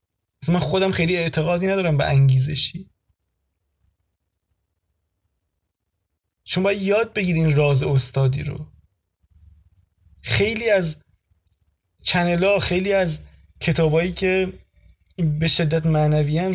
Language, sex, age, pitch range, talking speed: Persian, male, 20-39, 135-180 Hz, 85 wpm